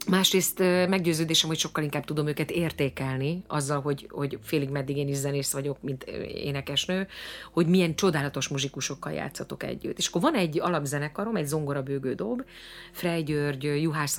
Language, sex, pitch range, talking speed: Hungarian, female, 140-180 Hz, 150 wpm